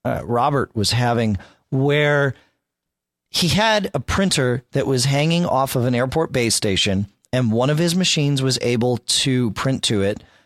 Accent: American